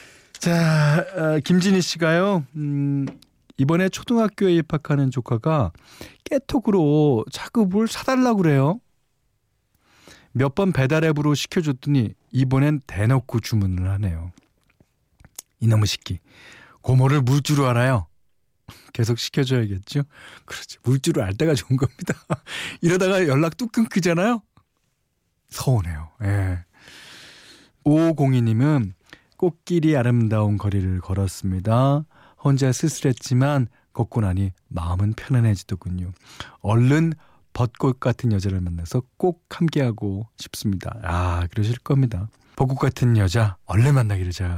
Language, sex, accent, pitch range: Korean, male, native, 105-155 Hz